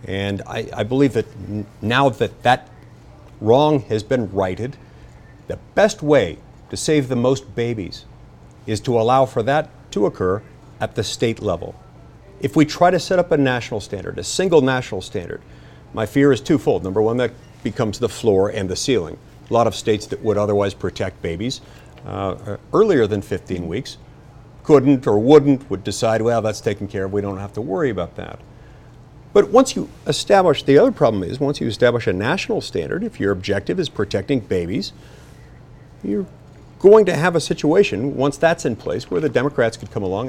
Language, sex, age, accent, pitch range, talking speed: English, male, 50-69, American, 105-135 Hz, 185 wpm